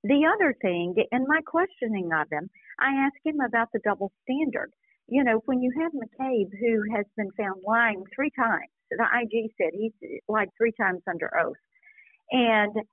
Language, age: English, 50-69